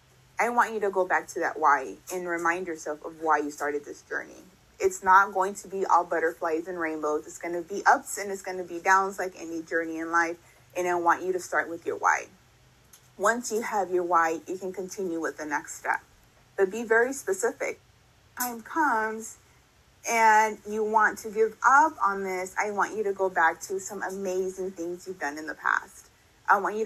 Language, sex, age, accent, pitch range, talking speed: English, female, 30-49, American, 170-220 Hz, 215 wpm